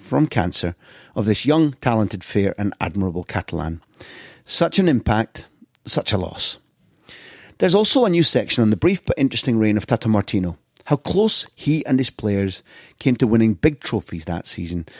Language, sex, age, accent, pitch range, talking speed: English, male, 30-49, British, 100-130 Hz, 170 wpm